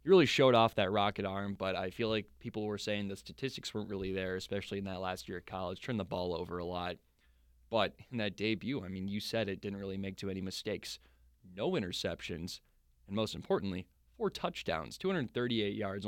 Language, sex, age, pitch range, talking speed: English, male, 20-39, 90-105 Hz, 210 wpm